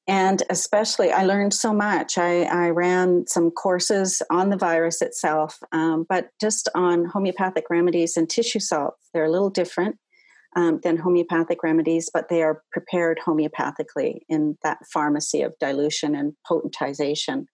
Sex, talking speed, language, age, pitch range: female, 150 wpm, English, 40-59, 165-210 Hz